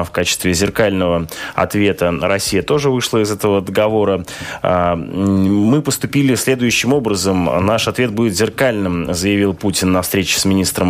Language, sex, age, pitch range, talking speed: Russian, male, 20-39, 95-110 Hz, 130 wpm